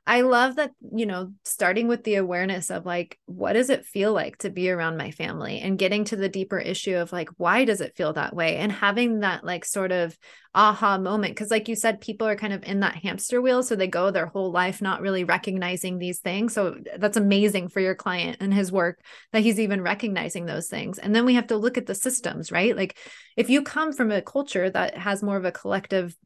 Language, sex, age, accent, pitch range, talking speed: English, female, 20-39, American, 185-225 Hz, 240 wpm